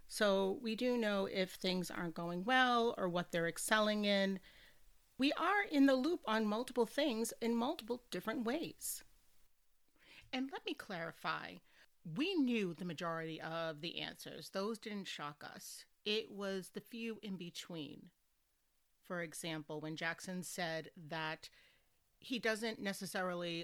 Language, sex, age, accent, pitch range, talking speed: English, female, 40-59, American, 165-225 Hz, 140 wpm